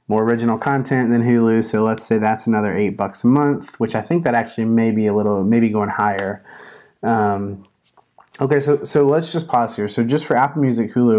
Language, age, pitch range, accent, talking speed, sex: English, 30-49, 105-125 Hz, American, 215 wpm, male